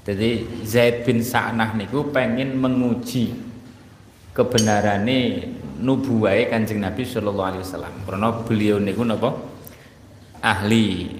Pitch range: 100-135 Hz